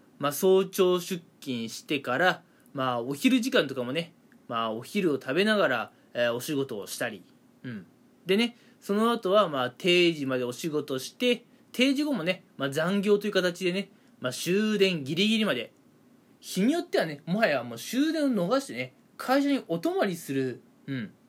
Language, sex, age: Japanese, male, 20-39